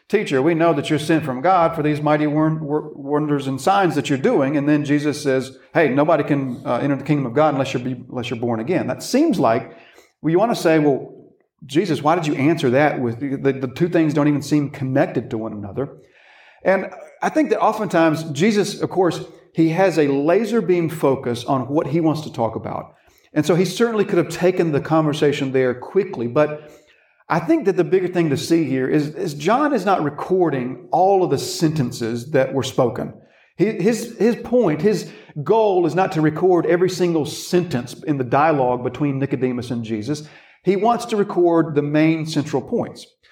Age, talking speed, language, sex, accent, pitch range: 40-59, 195 wpm, English, male, American, 140-180 Hz